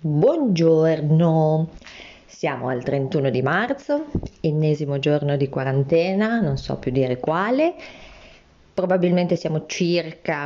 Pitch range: 145-195 Hz